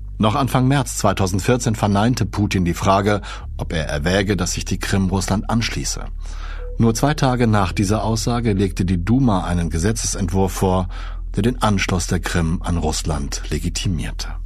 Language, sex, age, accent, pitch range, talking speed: German, male, 60-79, German, 80-105 Hz, 155 wpm